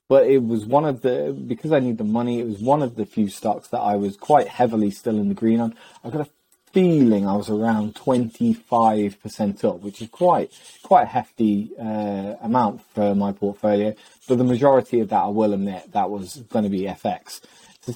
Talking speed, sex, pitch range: 215 wpm, male, 105-130 Hz